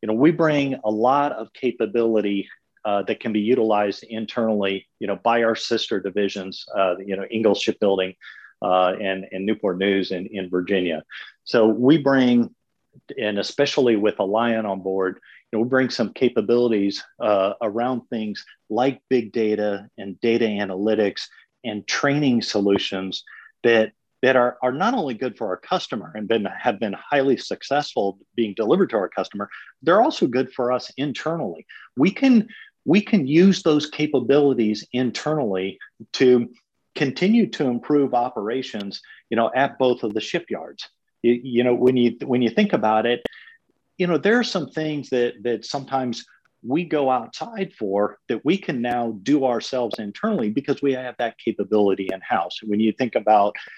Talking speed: 165 wpm